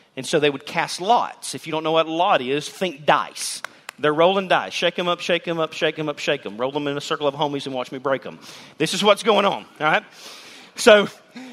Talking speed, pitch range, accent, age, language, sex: 260 wpm, 165-270 Hz, American, 40-59, English, male